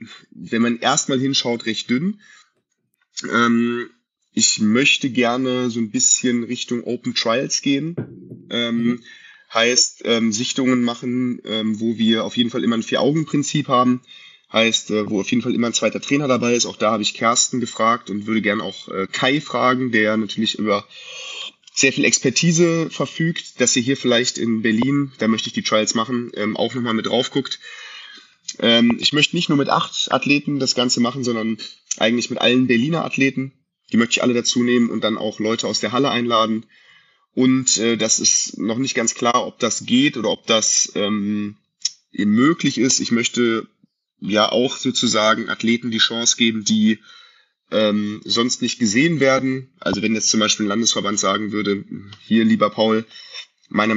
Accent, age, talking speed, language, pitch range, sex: German, 20-39, 170 wpm, German, 110-130 Hz, male